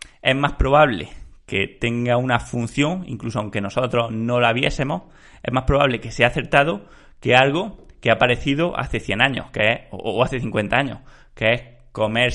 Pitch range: 115-145 Hz